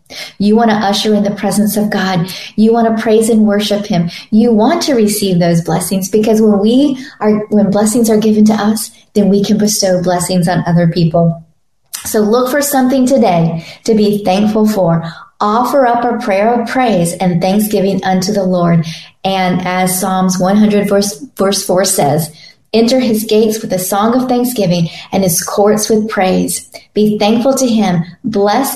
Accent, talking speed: American, 180 wpm